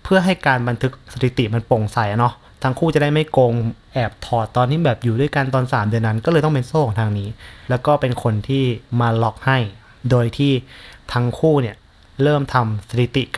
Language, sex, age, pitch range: Thai, male, 30-49, 115-140 Hz